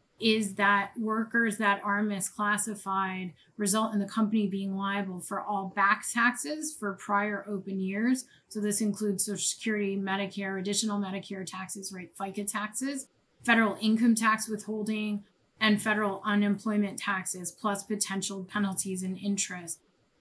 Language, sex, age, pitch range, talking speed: English, female, 20-39, 190-215 Hz, 135 wpm